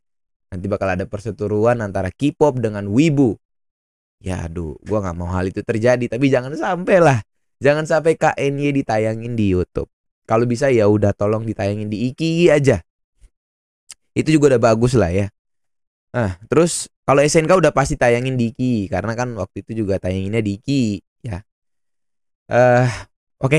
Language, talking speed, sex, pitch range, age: Indonesian, 160 wpm, male, 105-145 Hz, 20-39